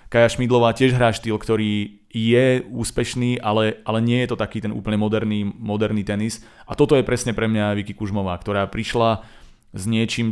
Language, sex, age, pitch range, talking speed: Slovak, male, 30-49, 100-115 Hz, 180 wpm